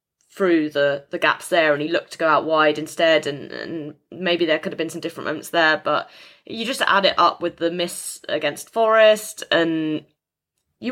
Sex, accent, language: female, British, English